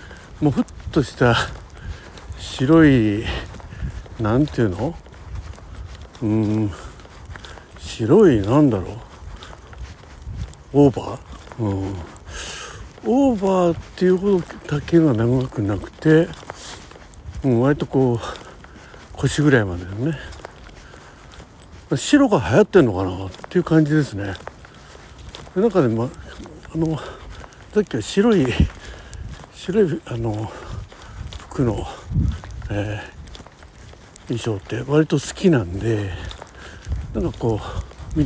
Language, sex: Japanese, male